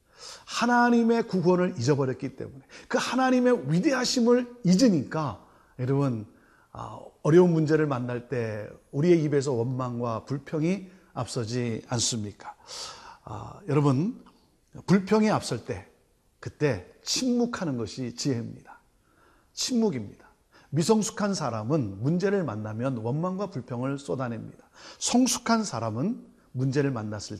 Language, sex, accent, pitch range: Korean, male, native, 125-195 Hz